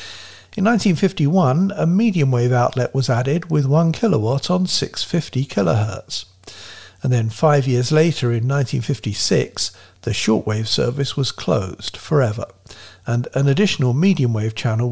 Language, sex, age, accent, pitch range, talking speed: English, male, 50-69, British, 110-145 Hz, 125 wpm